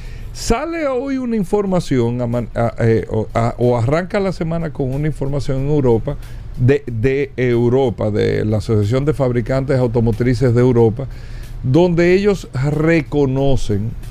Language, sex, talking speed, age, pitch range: Spanish, male, 125 wpm, 50-69, 125-180 Hz